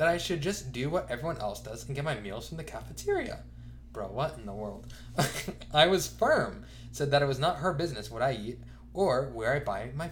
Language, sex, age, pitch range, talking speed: English, male, 20-39, 115-150 Hz, 230 wpm